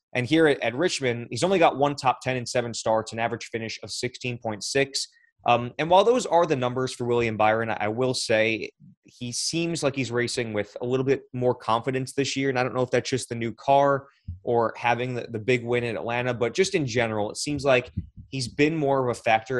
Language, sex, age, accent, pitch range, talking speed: English, male, 20-39, American, 115-140 Hz, 230 wpm